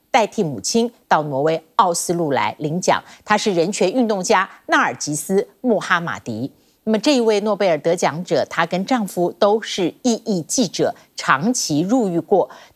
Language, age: Chinese, 50-69